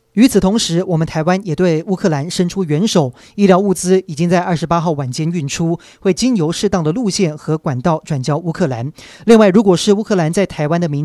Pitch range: 150-190 Hz